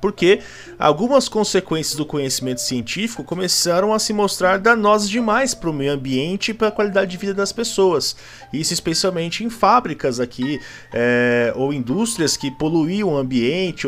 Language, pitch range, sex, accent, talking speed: Portuguese, 125-190 Hz, male, Brazilian, 150 wpm